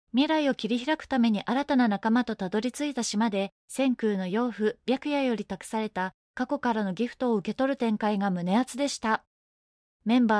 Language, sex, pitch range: Japanese, female, 210-265 Hz